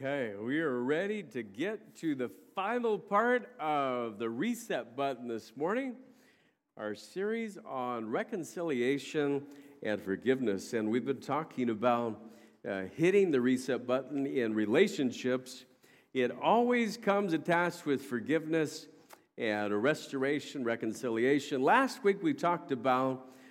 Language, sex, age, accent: English, male, 50-69, American